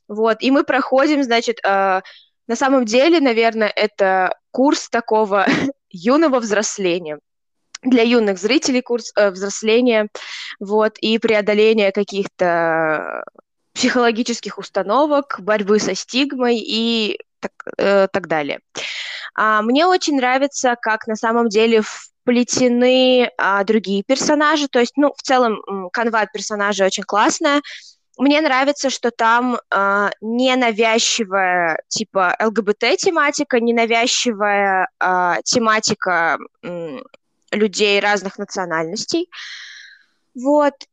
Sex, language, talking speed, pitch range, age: female, Russian, 105 wpm, 205-265 Hz, 20-39